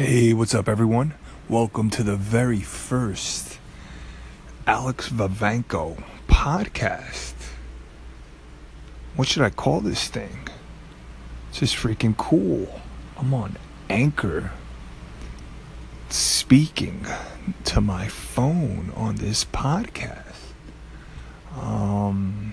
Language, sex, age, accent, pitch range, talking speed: English, male, 30-49, American, 70-120 Hz, 90 wpm